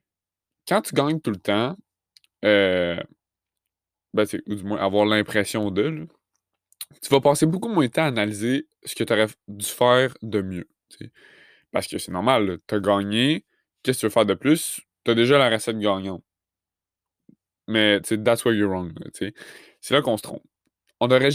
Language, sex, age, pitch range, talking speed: French, male, 20-39, 105-130 Hz, 175 wpm